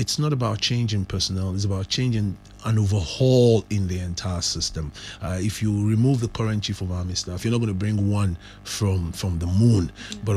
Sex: male